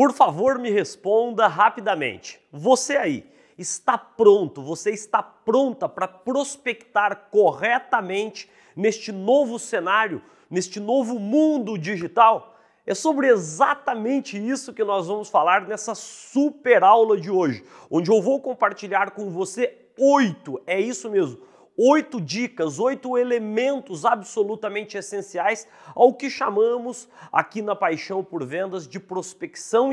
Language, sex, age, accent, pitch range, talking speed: Portuguese, male, 40-59, Brazilian, 195-245 Hz, 120 wpm